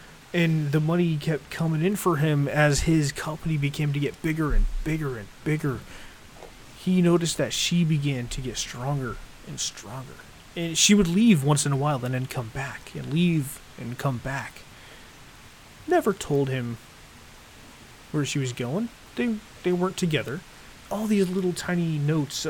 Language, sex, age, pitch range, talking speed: English, male, 30-49, 125-155 Hz, 165 wpm